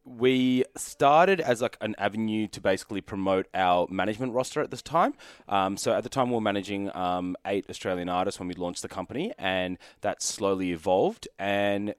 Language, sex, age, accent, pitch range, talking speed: English, male, 20-39, Australian, 90-105 Hz, 185 wpm